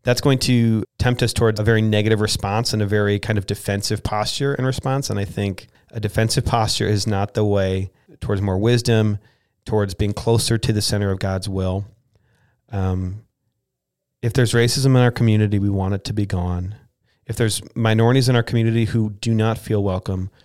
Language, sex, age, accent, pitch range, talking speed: English, male, 40-59, American, 100-120 Hz, 190 wpm